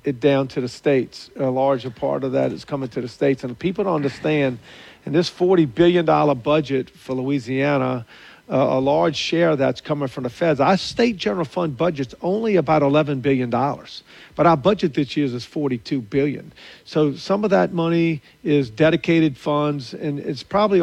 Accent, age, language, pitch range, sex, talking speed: American, 50-69, English, 135-160 Hz, male, 190 wpm